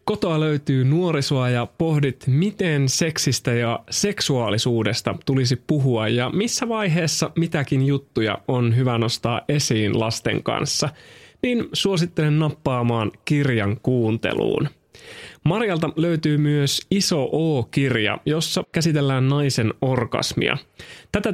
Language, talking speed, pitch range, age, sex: Finnish, 105 wpm, 125-170 Hz, 30-49, male